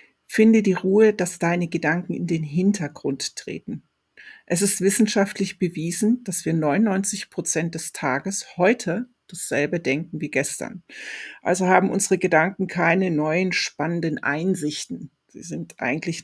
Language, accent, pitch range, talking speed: German, German, 160-195 Hz, 130 wpm